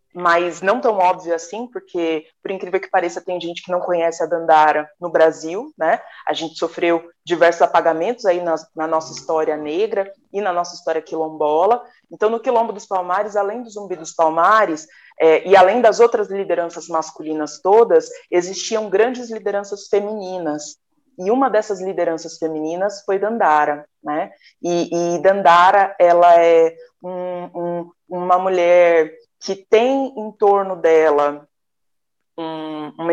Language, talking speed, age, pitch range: Portuguese, 145 wpm, 20-39, 170-225 Hz